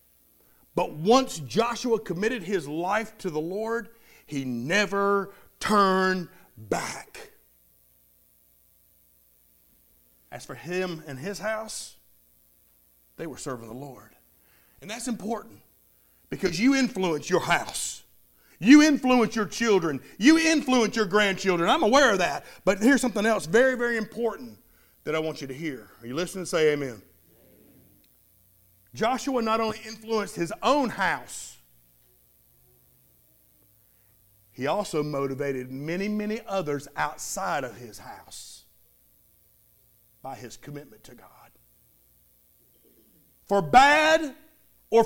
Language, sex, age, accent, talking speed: English, male, 50-69, American, 115 wpm